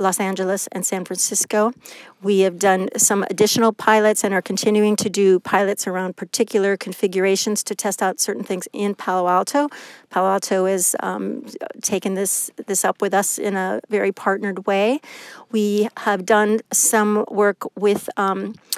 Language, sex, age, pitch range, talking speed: English, female, 50-69, 190-220 Hz, 155 wpm